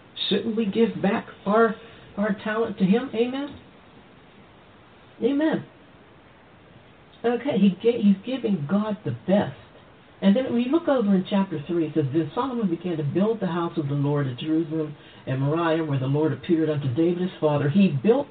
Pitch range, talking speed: 155-215 Hz, 175 wpm